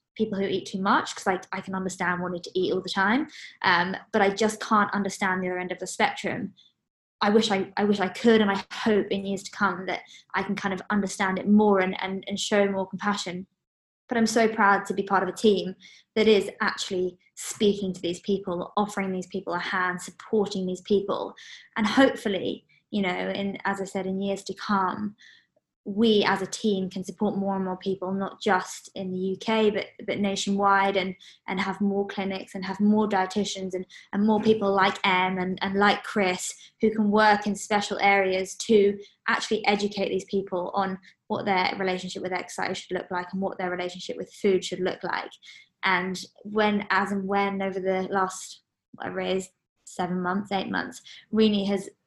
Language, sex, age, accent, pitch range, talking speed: English, female, 20-39, British, 190-205 Hz, 200 wpm